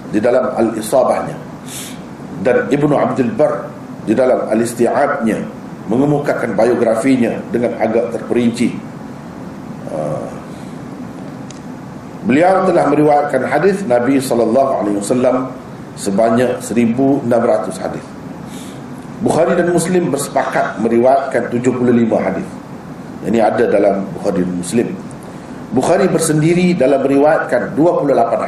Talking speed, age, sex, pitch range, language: 95 wpm, 50-69, male, 120-165 Hz, Malay